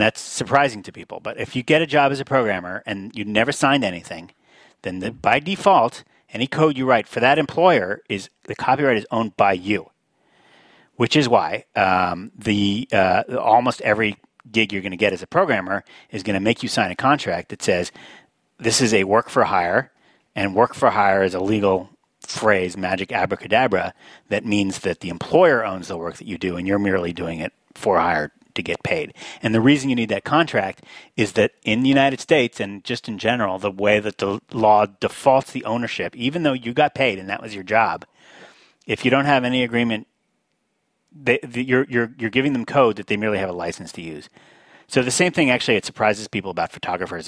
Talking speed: 210 wpm